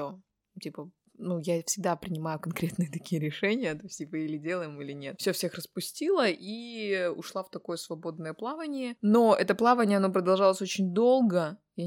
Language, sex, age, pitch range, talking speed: Russian, female, 20-39, 165-205 Hz, 150 wpm